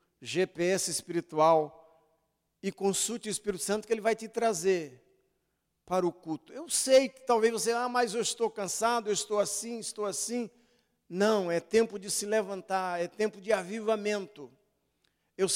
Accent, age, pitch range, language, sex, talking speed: Brazilian, 50-69, 180-230 Hz, Portuguese, male, 160 wpm